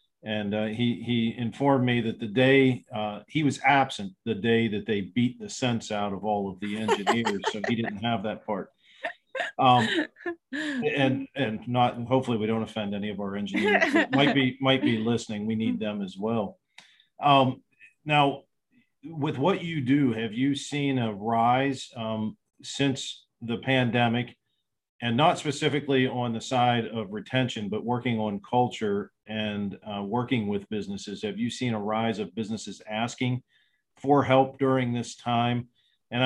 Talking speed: 165 wpm